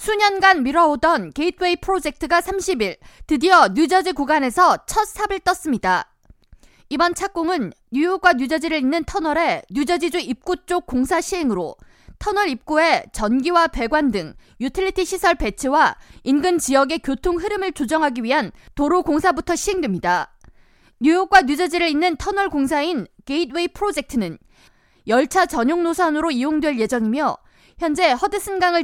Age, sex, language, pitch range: 20-39, female, Korean, 275-365 Hz